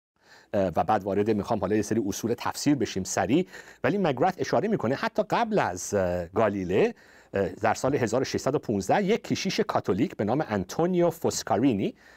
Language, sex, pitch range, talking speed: Persian, male, 115-175 Hz, 145 wpm